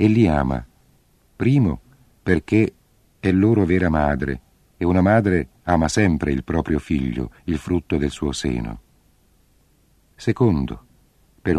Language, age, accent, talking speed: Italian, 50-69, native, 125 wpm